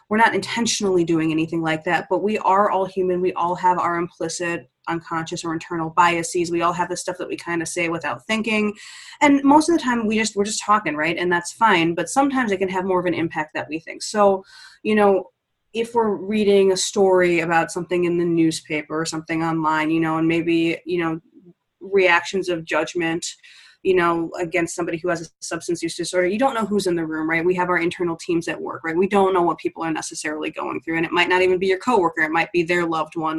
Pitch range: 165-195 Hz